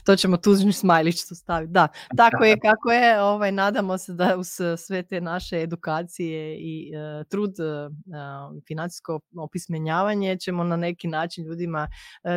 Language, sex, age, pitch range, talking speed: Croatian, female, 20-39, 155-185 Hz, 150 wpm